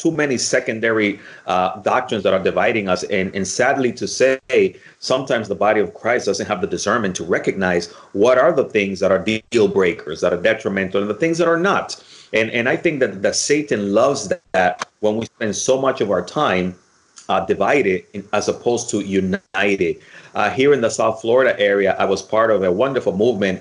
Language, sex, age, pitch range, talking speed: English, male, 30-49, 95-130 Hz, 205 wpm